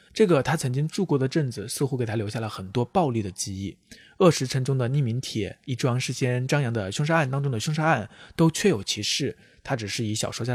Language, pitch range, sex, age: Chinese, 110-140 Hz, male, 20-39